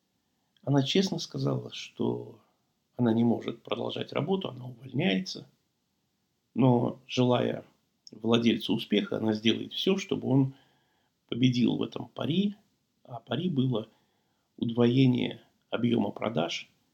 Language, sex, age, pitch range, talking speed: Russian, male, 50-69, 120-175 Hz, 105 wpm